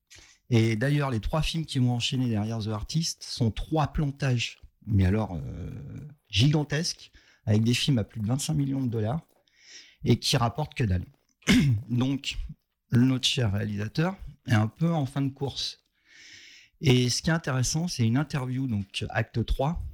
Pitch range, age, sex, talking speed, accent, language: 115-155 Hz, 40-59, male, 165 wpm, French, French